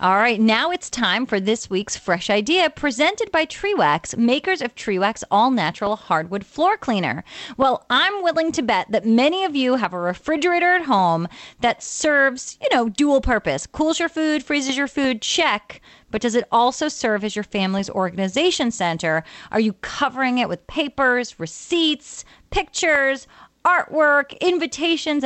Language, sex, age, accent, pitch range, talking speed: English, female, 30-49, American, 215-285 Hz, 160 wpm